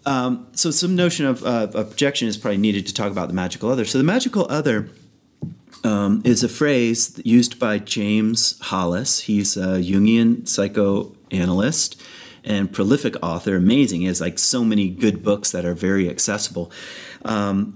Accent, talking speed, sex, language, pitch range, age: American, 165 wpm, male, English, 100-130 Hz, 30-49